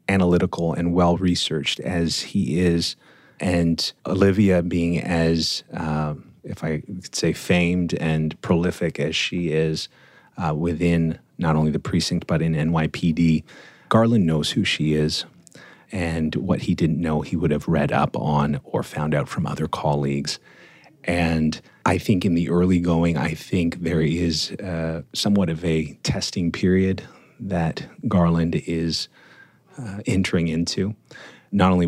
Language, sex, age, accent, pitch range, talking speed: English, male, 30-49, American, 80-95 Hz, 145 wpm